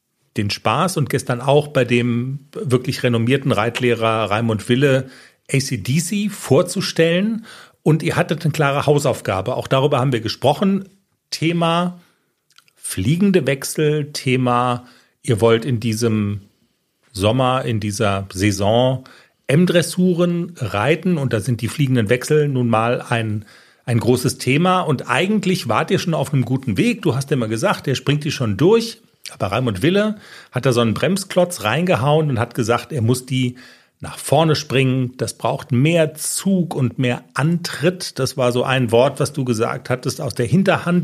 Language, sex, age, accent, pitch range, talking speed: German, male, 40-59, German, 120-170 Hz, 155 wpm